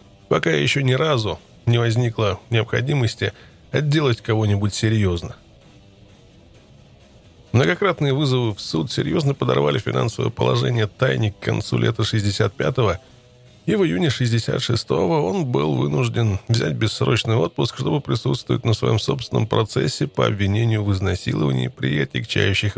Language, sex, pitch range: Russian, male, 105-130 Hz